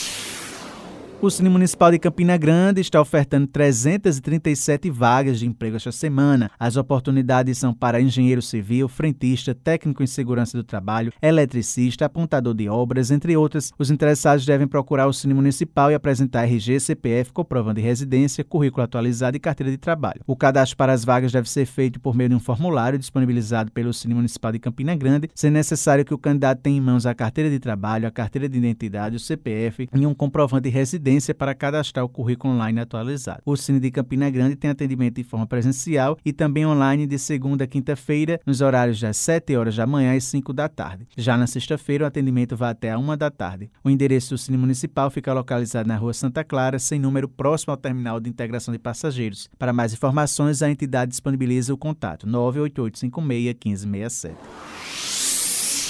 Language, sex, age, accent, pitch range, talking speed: Portuguese, male, 20-39, Brazilian, 120-145 Hz, 180 wpm